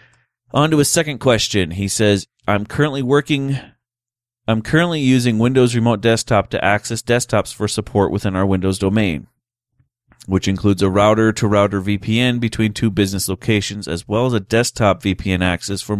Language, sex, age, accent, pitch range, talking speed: English, male, 30-49, American, 100-120 Hz, 165 wpm